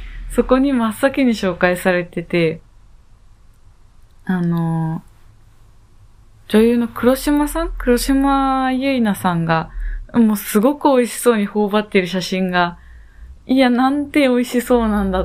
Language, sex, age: Japanese, female, 20-39